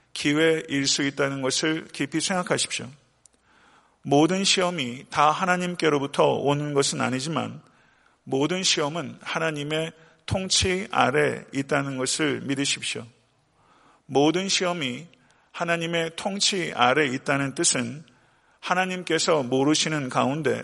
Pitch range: 135-170 Hz